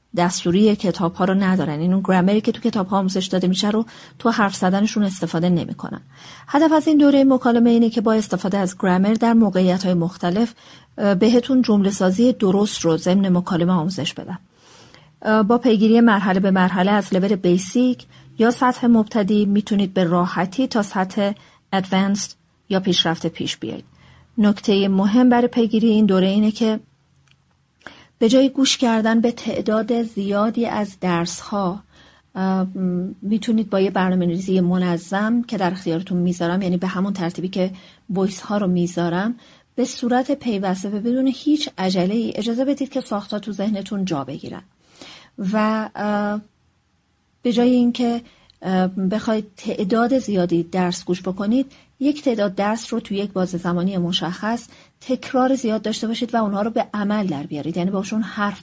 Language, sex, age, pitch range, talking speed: Persian, female, 40-59, 185-230 Hz, 150 wpm